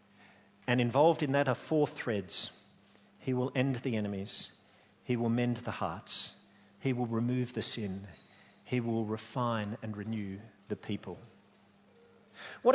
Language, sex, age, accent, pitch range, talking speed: English, male, 50-69, Australian, 125-175 Hz, 140 wpm